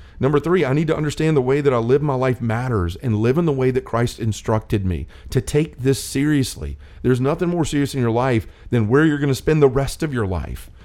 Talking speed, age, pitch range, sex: 250 wpm, 40-59, 105-140 Hz, male